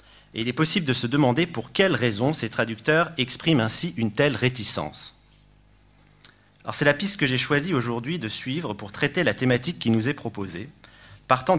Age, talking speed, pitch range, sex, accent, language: 40-59, 180 wpm, 115-145 Hz, male, French, French